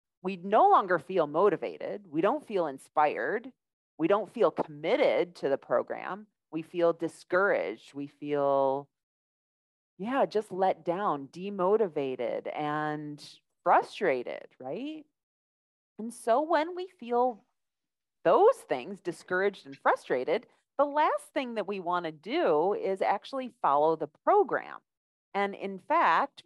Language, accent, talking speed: English, American, 125 wpm